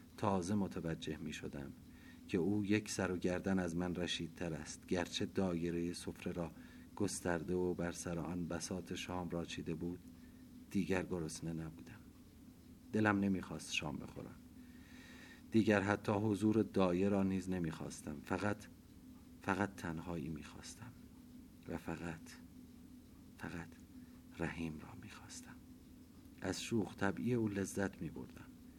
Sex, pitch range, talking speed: male, 85-100 Hz, 130 wpm